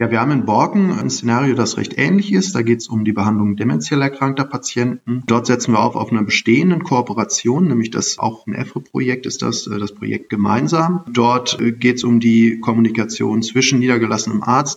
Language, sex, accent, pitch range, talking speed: German, male, German, 110-135 Hz, 190 wpm